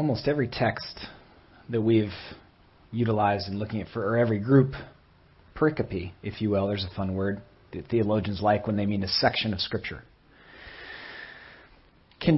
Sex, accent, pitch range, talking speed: male, American, 100-145 Hz, 155 wpm